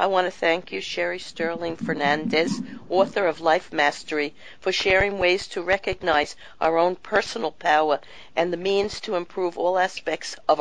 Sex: female